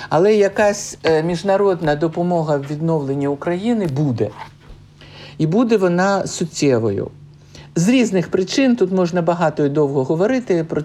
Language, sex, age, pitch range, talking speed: Ukrainian, male, 60-79, 140-185 Hz, 120 wpm